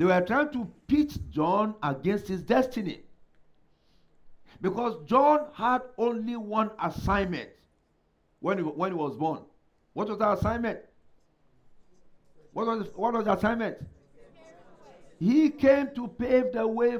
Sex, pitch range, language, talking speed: male, 175-250 Hz, English, 135 wpm